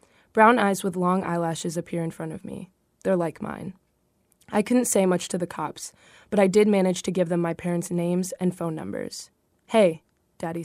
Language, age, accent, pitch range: English, 20-39, American, 170-200 Hz